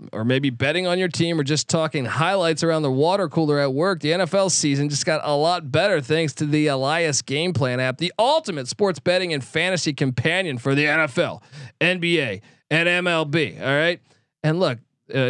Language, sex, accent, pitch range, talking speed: English, male, American, 140-185 Hz, 190 wpm